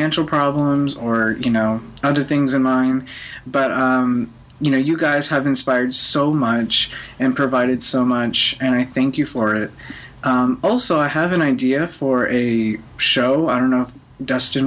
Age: 20-39